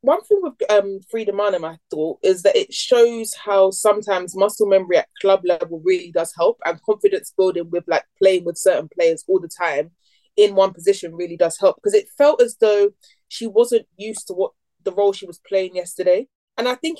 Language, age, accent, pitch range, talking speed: English, 20-39, British, 185-250 Hz, 210 wpm